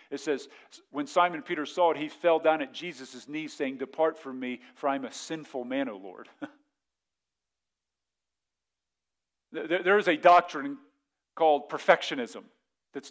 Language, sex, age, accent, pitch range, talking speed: English, male, 40-59, American, 135-175 Hz, 150 wpm